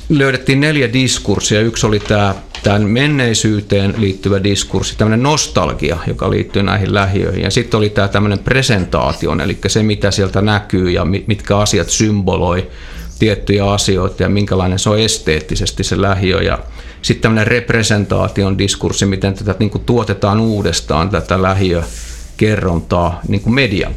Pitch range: 95-110 Hz